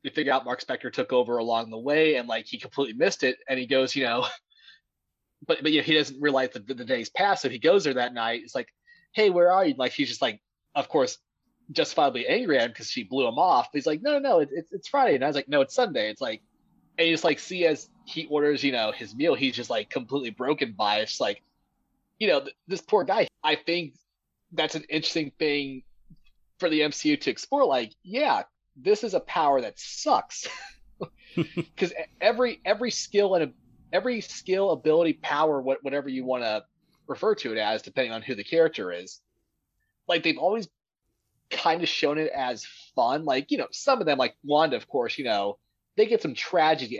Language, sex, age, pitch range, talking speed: English, male, 20-39, 130-195 Hz, 225 wpm